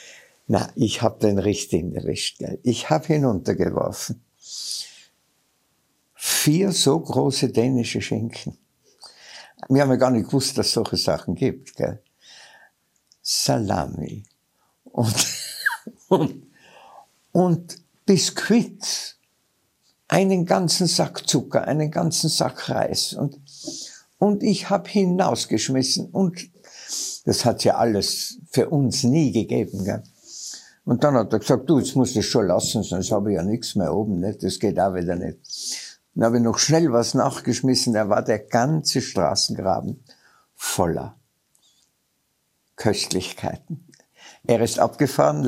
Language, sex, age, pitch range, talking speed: German, male, 60-79, 110-160 Hz, 130 wpm